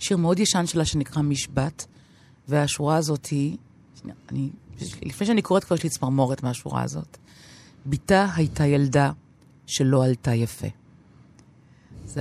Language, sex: Hebrew, female